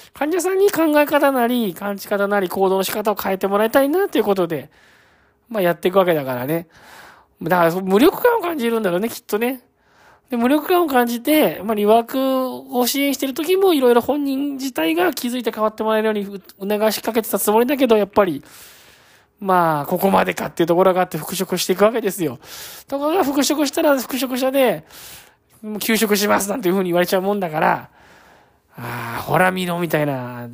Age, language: 20-39, Japanese